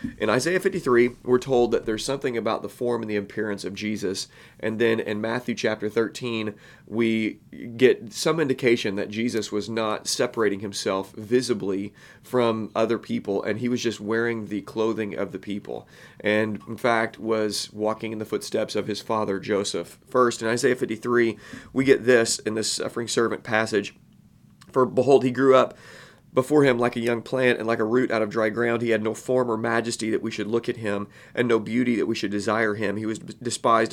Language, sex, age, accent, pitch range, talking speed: English, male, 30-49, American, 105-120 Hz, 200 wpm